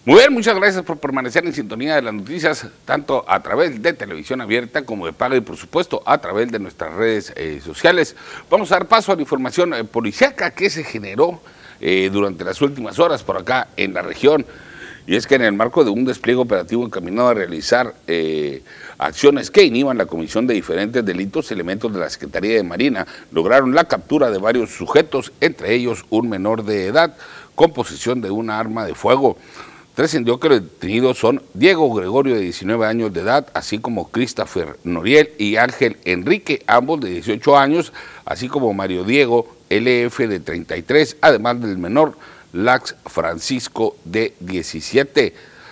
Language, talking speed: Spanish, 180 wpm